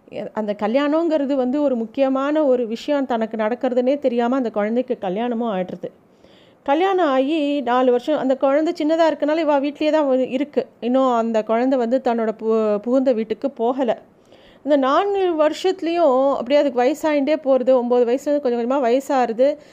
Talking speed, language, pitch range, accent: 145 wpm, Tamil, 230-285 Hz, native